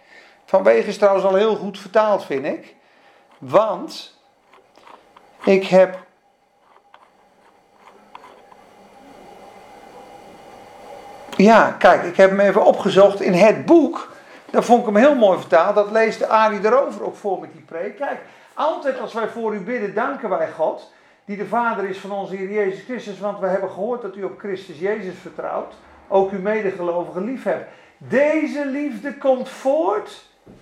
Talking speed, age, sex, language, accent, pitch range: 150 wpm, 50-69, male, Dutch, Dutch, 200-280 Hz